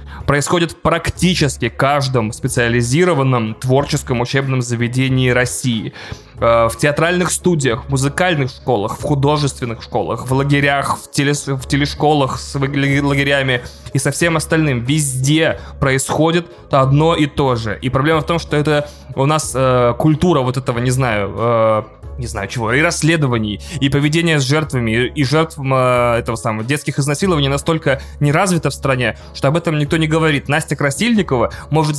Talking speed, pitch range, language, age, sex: 140 wpm, 125-155 Hz, Russian, 20-39, male